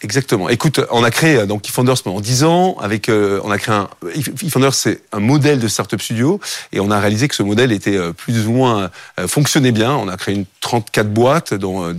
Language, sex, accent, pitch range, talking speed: French, male, French, 105-130 Hz, 230 wpm